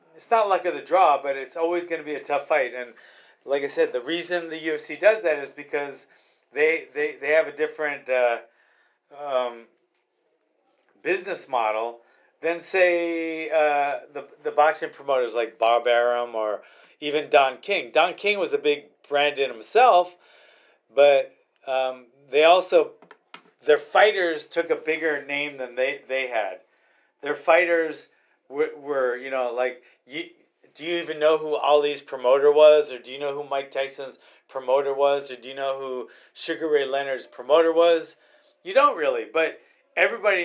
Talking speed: 165 wpm